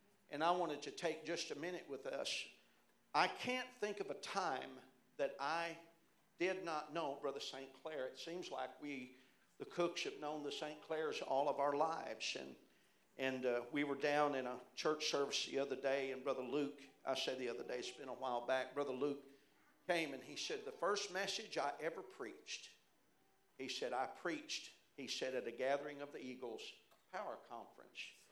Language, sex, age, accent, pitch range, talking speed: English, male, 50-69, American, 135-175 Hz, 195 wpm